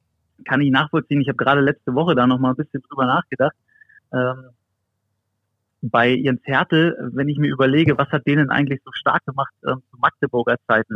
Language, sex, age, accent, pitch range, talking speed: German, male, 30-49, German, 110-135 Hz, 185 wpm